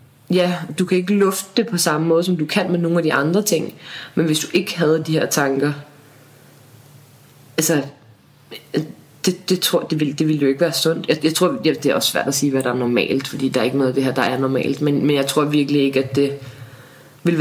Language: Danish